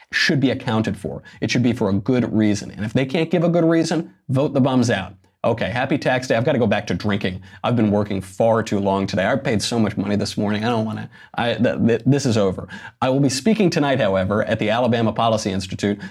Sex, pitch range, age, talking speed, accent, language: male, 100-120 Hz, 30-49, 245 wpm, American, English